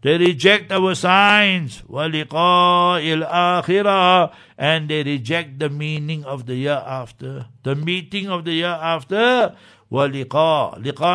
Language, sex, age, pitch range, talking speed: English, male, 60-79, 135-170 Hz, 120 wpm